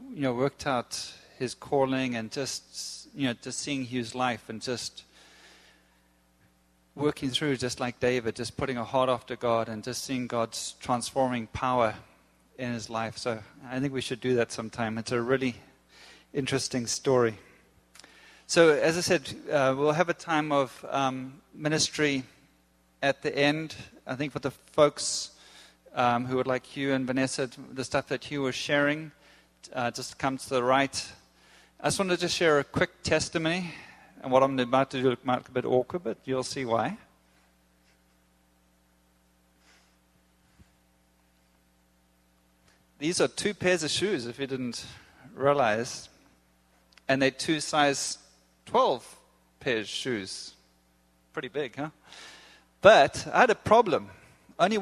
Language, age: English, 30-49